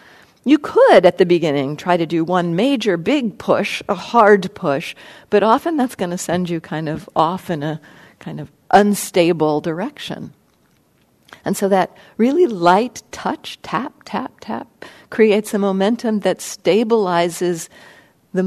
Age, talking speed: 50-69, 150 wpm